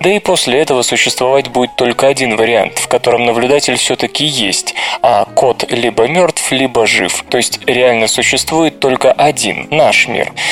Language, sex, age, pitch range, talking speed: Russian, male, 20-39, 120-150 Hz, 160 wpm